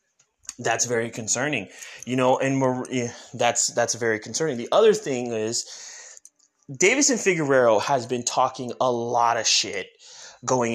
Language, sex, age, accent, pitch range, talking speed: English, male, 20-39, American, 130-185 Hz, 145 wpm